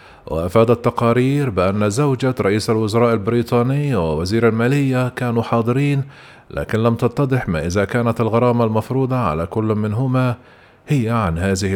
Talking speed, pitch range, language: 130 wpm, 110-125 Hz, Arabic